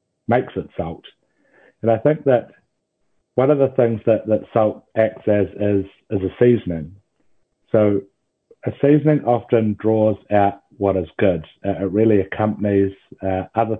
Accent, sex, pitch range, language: British, male, 95-115 Hz, English